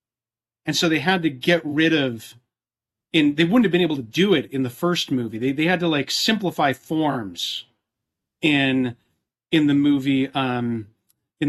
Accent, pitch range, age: American, 130-170 Hz, 40-59